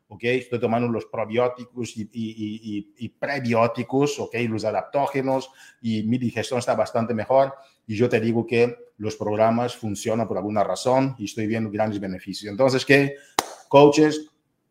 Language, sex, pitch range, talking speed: Spanish, male, 110-130 Hz, 155 wpm